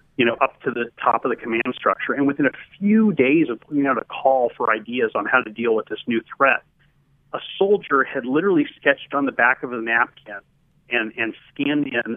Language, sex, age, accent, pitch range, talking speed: English, male, 40-59, American, 115-145 Hz, 220 wpm